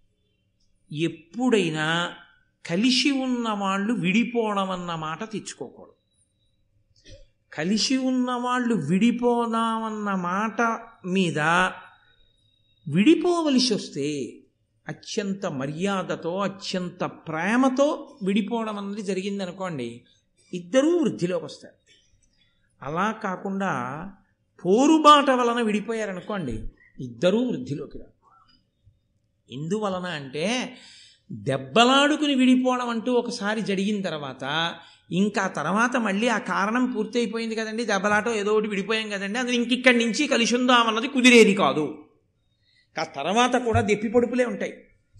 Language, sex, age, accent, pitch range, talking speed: Telugu, male, 50-69, native, 165-235 Hz, 85 wpm